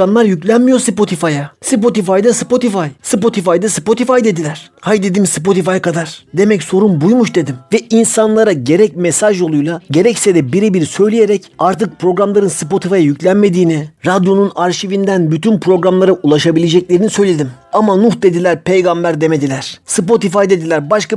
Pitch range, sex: 170-215 Hz, male